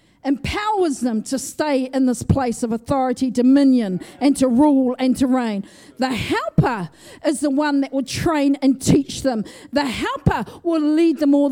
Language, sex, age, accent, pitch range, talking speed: English, female, 40-59, Australian, 260-335 Hz, 170 wpm